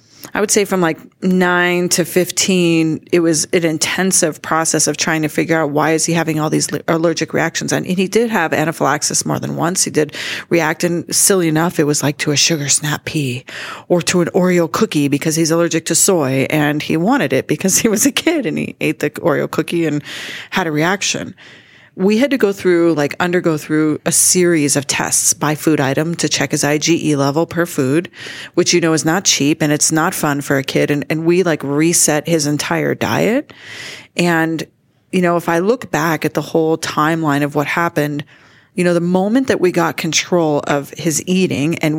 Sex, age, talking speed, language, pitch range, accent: female, 30-49, 210 wpm, English, 150-175 Hz, American